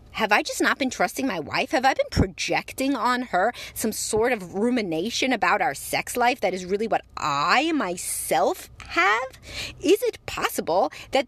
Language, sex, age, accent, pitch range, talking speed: English, female, 30-49, American, 195-270 Hz, 175 wpm